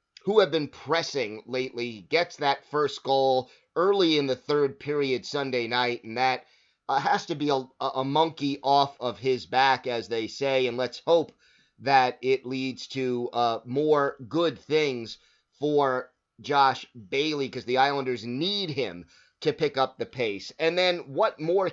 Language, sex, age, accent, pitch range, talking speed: English, male, 30-49, American, 125-155 Hz, 165 wpm